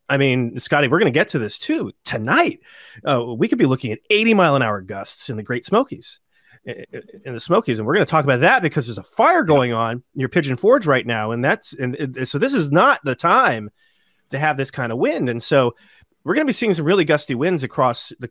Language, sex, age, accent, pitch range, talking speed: English, male, 30-49, American, 125-150 Hz, 250 wpm